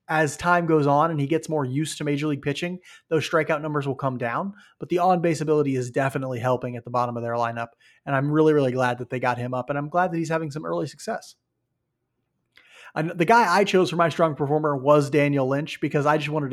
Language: English